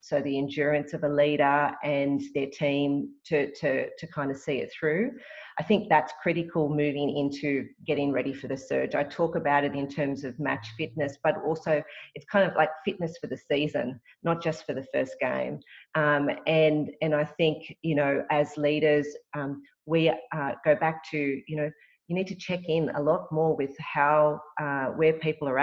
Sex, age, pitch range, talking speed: female, 40-59, 140-160 Hz, 195 wpm